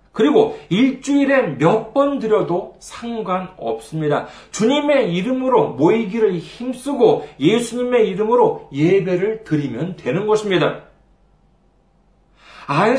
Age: 40-59